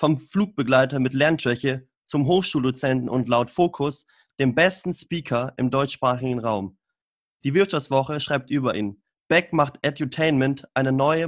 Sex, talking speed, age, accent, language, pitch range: male, 135 wpm, 30-49, German, German, 125-155 Hz